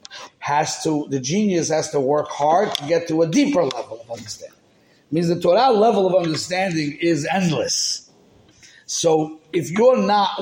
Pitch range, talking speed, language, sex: 135-180 Hz, 160 wpm, English, male